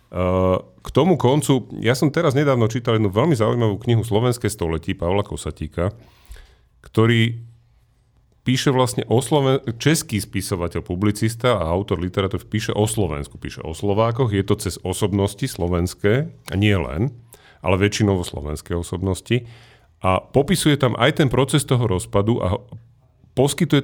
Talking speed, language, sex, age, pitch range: 145 wpm, Slovak, male, 40-59, 95-125 Hz